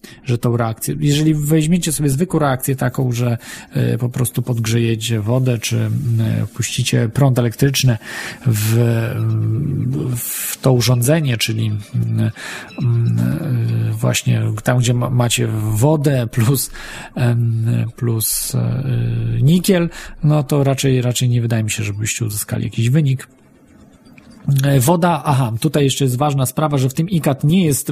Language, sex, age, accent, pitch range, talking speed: Polish, male, 40-59, native, 120-145 Hz, 120 wpm